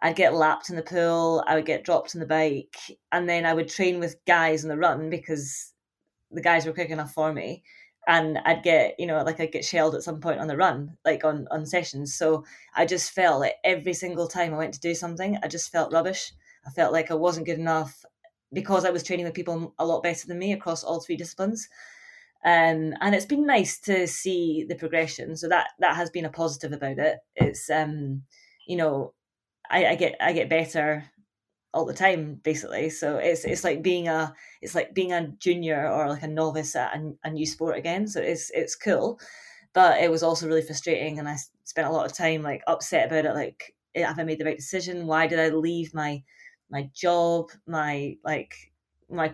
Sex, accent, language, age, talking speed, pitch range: female, British, English, 20-39, 220 wpm, 155-175 Hz